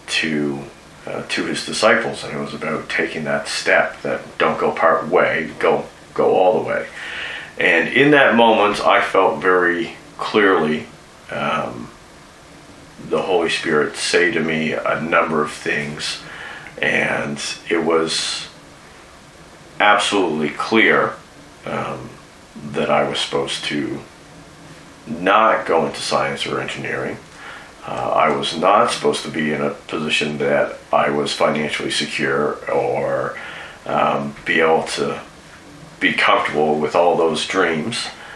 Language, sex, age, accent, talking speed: English, male, 40-59, American, 130 wpm